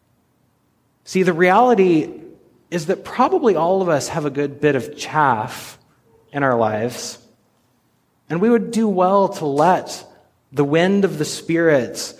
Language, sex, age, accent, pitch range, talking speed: English, male, 30-49, American, 130-185 Hz, 150 wpm